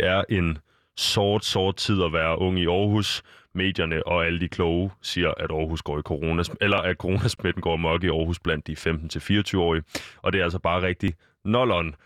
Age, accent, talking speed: 20-39, native, 195 wpm